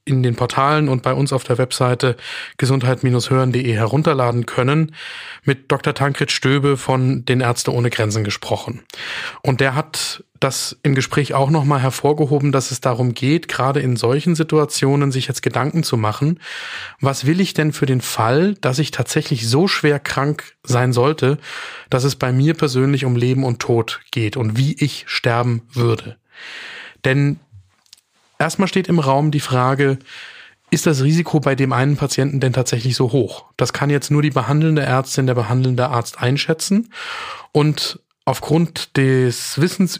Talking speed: 160 wpm